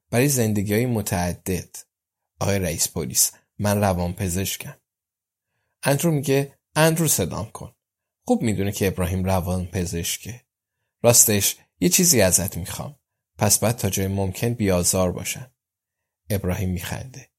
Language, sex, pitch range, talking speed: Persian, male, 95-120 Hz, 115 wpm